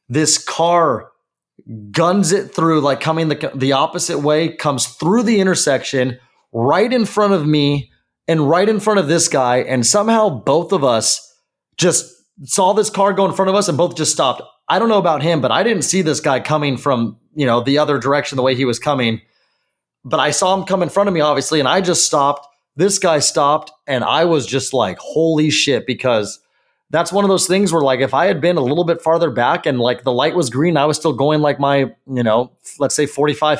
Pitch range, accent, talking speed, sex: 140-180 Hz, American, 225 wpm, male